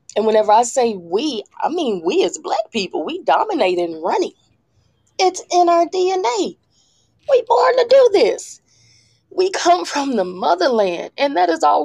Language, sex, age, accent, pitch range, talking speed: English, female, 20-39, American, 160-265 Hz, 165 wpm